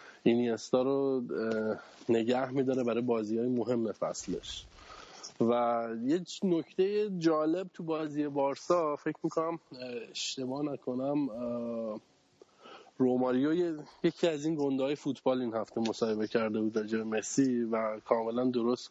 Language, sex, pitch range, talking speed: Persian, male, 115-145 Hz, 115 wpm